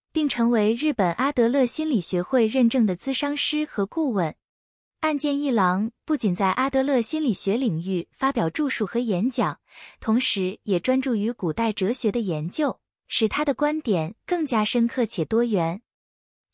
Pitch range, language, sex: 200-275 Hz, Chinese, female